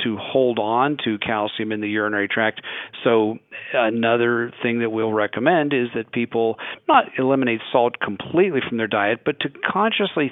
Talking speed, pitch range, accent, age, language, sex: 155 wpm, 105-125 Hz, American, 50-69, English, male